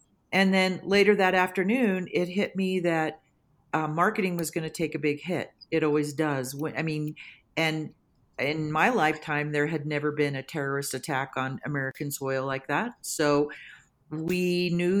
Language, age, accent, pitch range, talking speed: English, 40-59, American, 150-185 Hz, 170 wpm